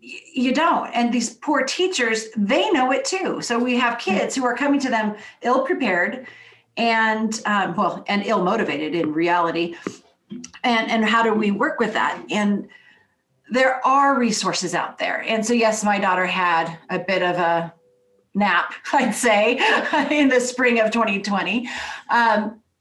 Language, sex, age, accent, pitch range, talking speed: English, female, 40-59, American, 190-245 Hz, 160 wpm